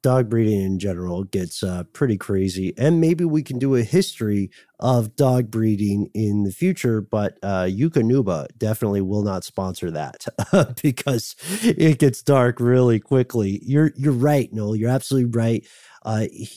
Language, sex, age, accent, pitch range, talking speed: English, male, 40-59, American, 110-140 Hz, 155 wpm